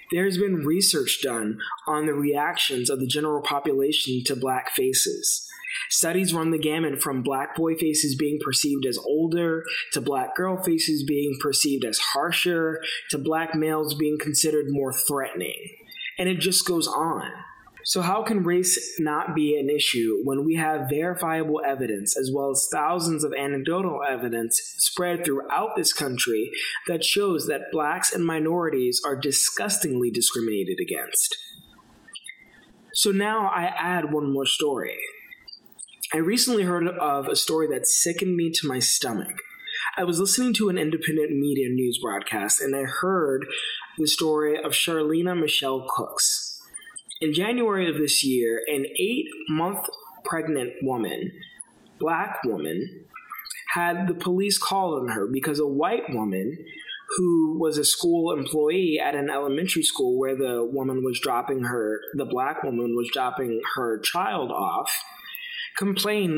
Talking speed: 145 wpm